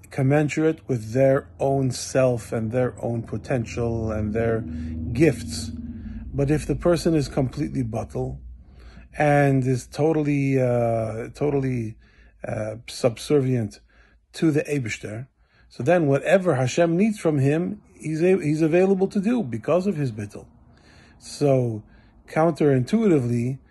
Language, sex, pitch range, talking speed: English, male, 115-145 Hz, 120 wpm